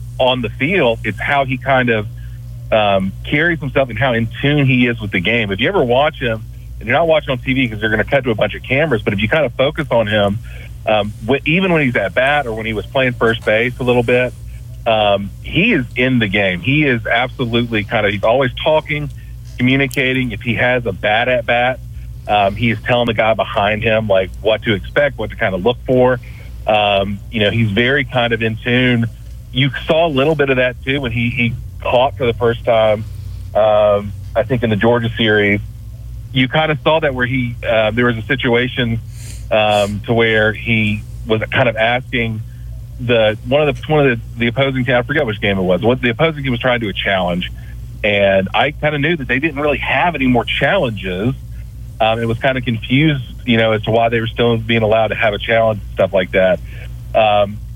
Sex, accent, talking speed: male, American, 230 wpm